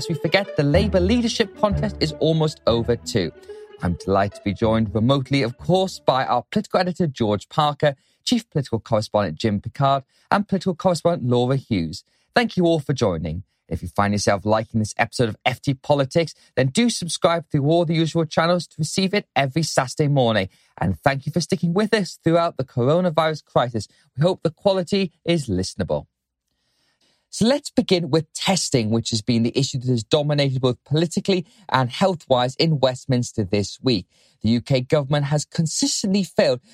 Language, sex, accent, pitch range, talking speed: English, male, British, 125-175 Hz, 175 wpm